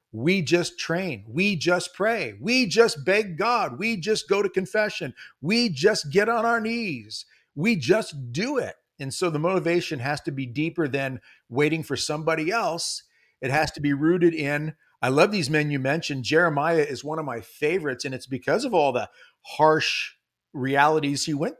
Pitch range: 145-205 Hz